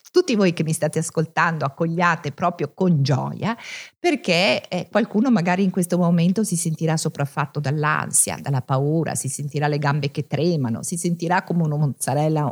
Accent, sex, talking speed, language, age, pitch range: native, female, 165 wpm, Italian, 50-69, 150-210 Hz